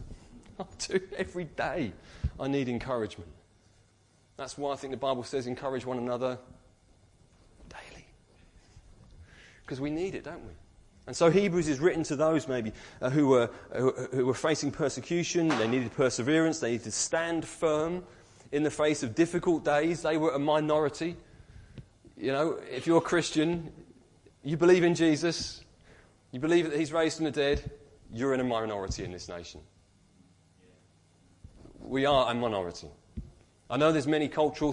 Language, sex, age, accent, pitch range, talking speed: English, male, 30-49, British, 110-155 Hz, 155 wpm